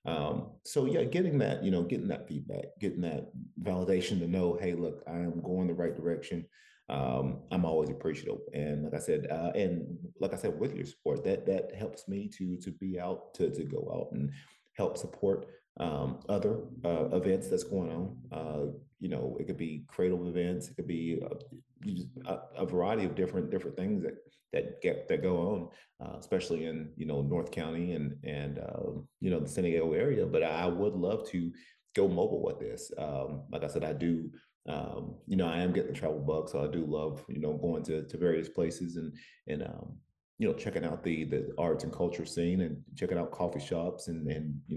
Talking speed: 210 wpm